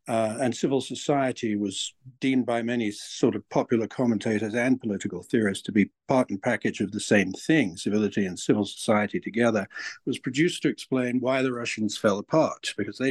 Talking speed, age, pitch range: 185 wpm, 60-79, 105-140 Hz